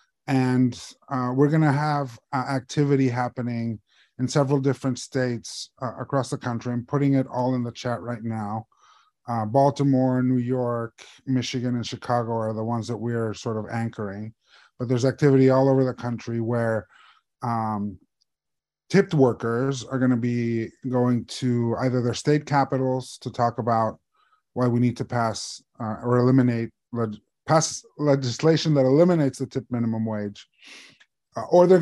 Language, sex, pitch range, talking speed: English, male, 115-135 Hz, 155 wpm